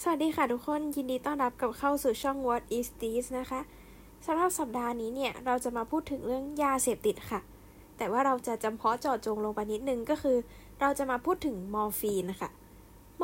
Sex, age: female, 10-29